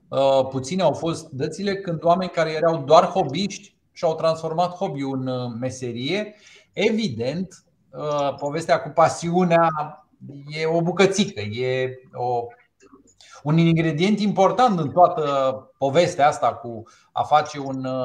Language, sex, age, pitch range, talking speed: Romanian, male, 30-49, 135-185 Hz, 115 wpm